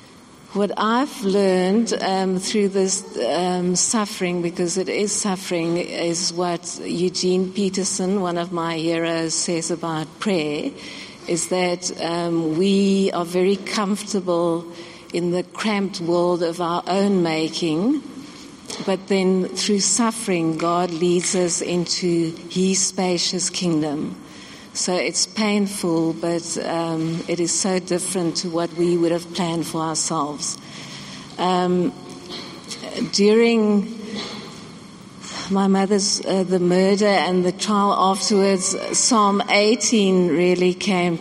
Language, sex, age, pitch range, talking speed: English, female, 50-69, 170-200 Hz, 120 wpm